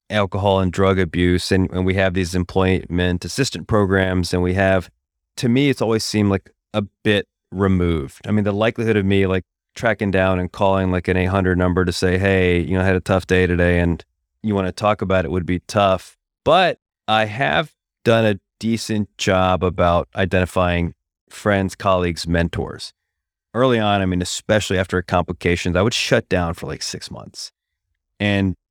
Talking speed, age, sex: 185 wpm, 30-49, male